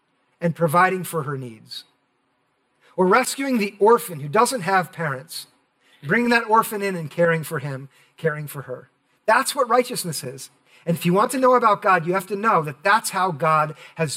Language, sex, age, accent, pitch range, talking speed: English, male, 50-69, American, 135-210 Hz, 190 wpm